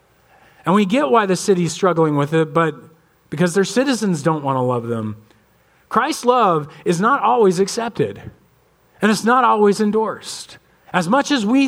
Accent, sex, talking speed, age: American, male, 170 wpm, 40-59